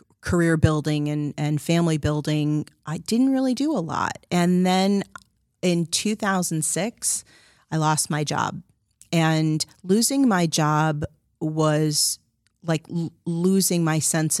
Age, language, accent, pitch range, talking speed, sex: 30-49, English, American, 150-175 Hz, 120 wpm, female